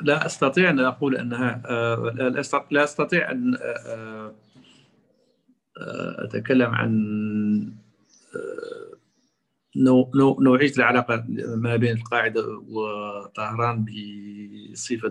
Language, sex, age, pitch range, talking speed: Arabic, male, 50-69, 110-130 Hz, 70 wpm